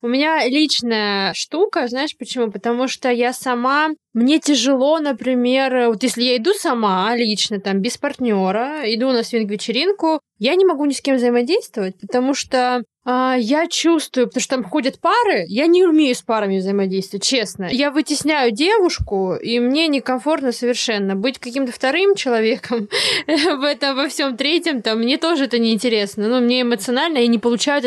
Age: 20-39